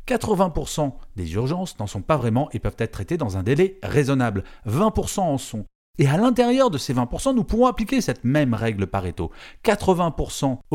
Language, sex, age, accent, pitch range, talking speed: French, male, 40-59, French, 100-160 Hz, 180 wpm